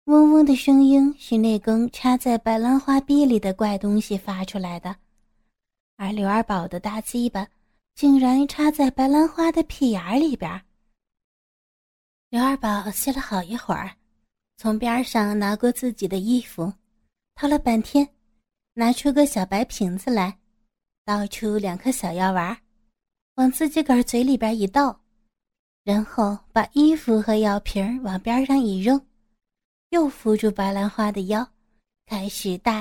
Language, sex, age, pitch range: Chinese, female, 30-49, 205-245 Hz